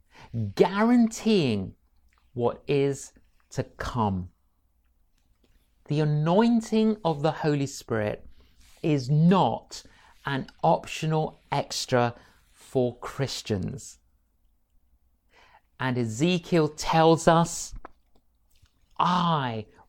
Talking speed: 70 wpm